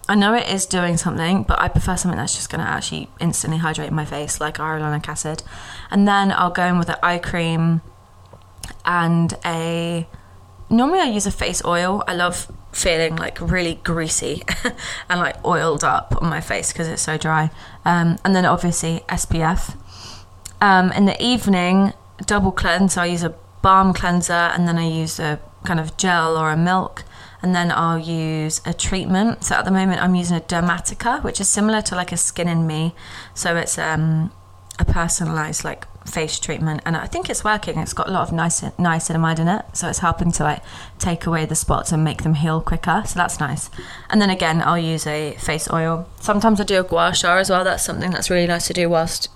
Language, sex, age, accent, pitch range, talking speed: English, female, 20-39, British, 160-180 Hz, 205 wpm